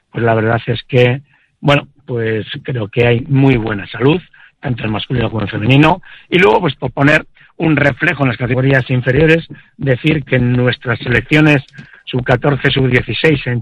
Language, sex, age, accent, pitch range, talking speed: Spanish, male, 60-79, Spanish, 125-150 Hz, 170 wpm